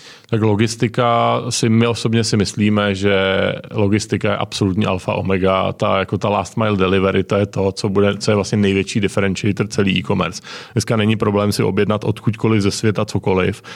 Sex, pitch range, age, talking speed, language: male, 100-110 Hz, 30-49, 175 wpm, Czech